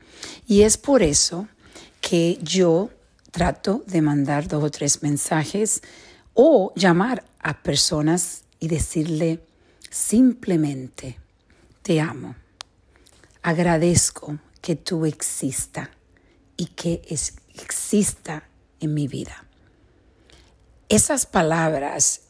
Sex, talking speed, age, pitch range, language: female, 90 wpm, 50-69, 155-190 Hz, English